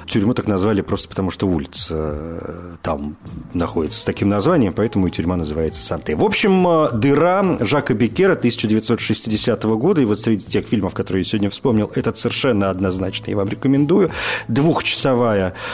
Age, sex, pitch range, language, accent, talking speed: 40-59, male, 95-120 Hz, Russian, native, 150 wpm